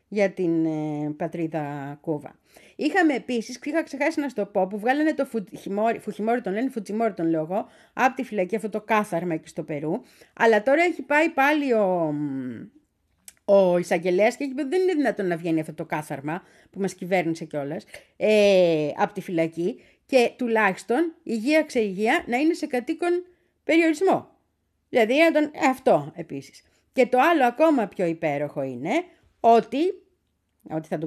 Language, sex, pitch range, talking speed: Greek, female, 170-280 Hz, 155 wpm